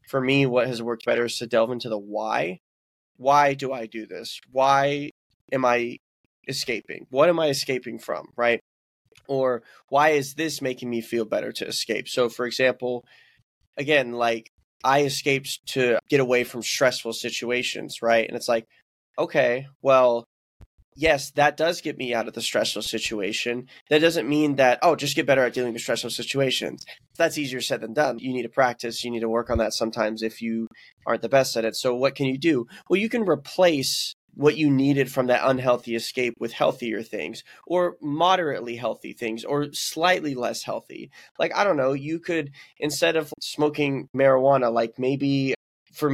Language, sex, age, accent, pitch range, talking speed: English, male, 20-39, American, 120-145 Hz, 185 wpm